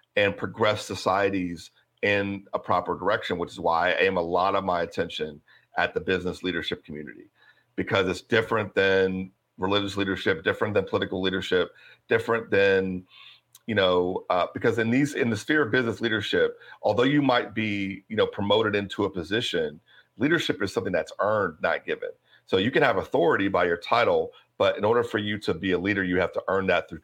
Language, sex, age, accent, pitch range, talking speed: English, male, 40-59, American, 95-145 Hz, 190 wpm